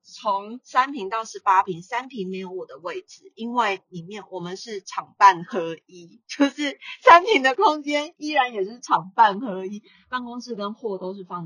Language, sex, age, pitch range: Chinese, female, 30-49, 175-240 Hz